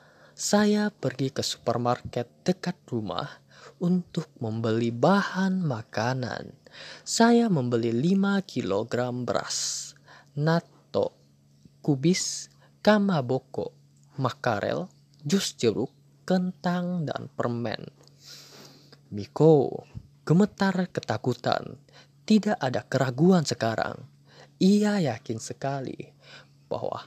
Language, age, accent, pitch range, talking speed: Indonesian, 20-39, native, 120-185 Hz, 80 wpm